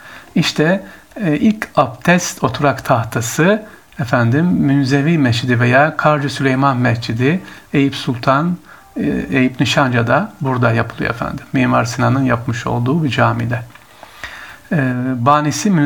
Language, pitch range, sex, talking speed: Turkish, 120-150 Hz, male, 110 wpm